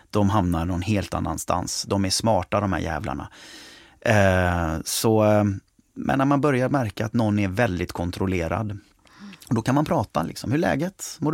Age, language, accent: 30-49, English, Swedish